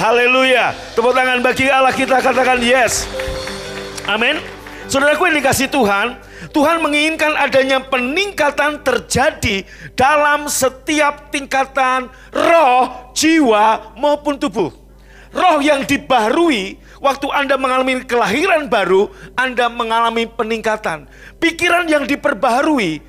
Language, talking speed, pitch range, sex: Indonesian, 105 wpm, 215-290 Hz, male